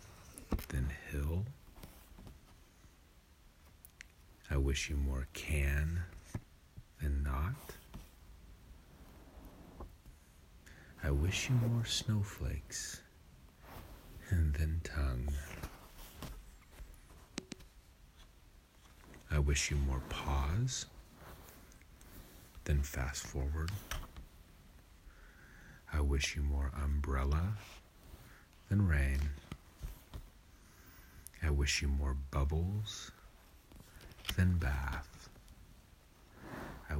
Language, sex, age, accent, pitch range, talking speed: English, male, 40-59, American, 70-90 Hz, 65 wpm